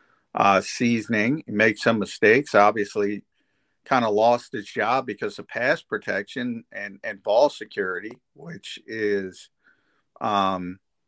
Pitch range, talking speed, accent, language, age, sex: 100-120 Hz, 120 wpm, American, English, 50-69, male